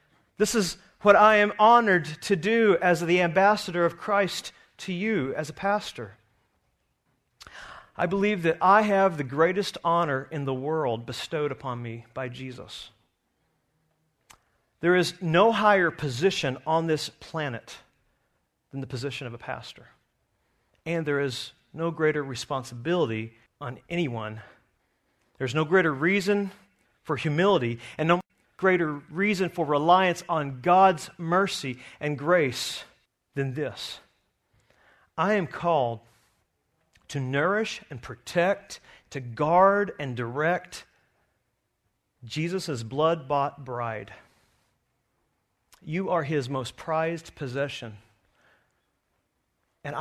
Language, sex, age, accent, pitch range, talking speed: English, male, 40-59, American, 120-175 Hz, 115 wpm